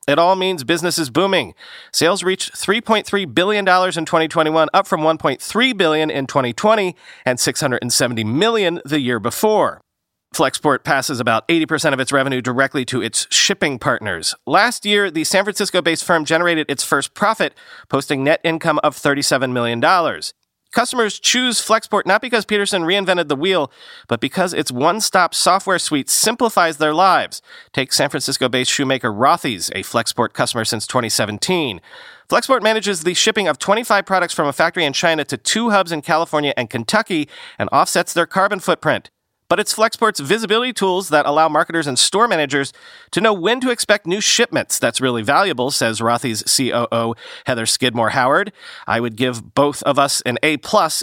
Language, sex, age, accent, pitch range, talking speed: English, male, 40-59, American, 135-200 Hz, 165 wpm